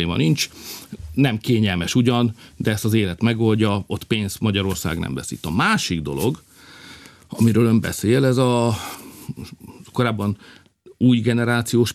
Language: Hungarian